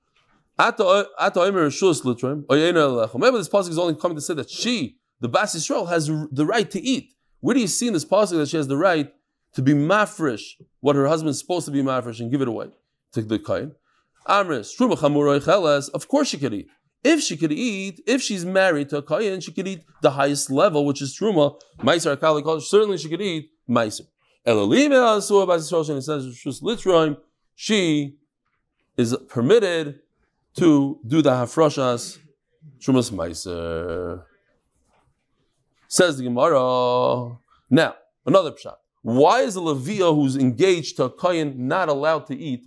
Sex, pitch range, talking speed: male, 140-190 Hz, 145 wpm